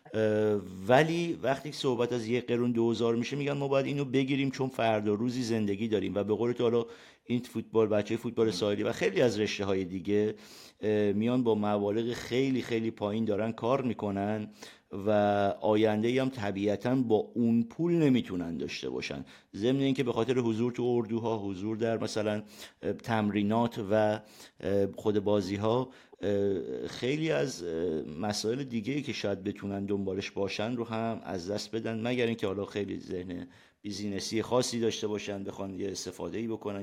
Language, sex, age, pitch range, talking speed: Persian, male, 50-69, 100-120 Hz, 155 wpm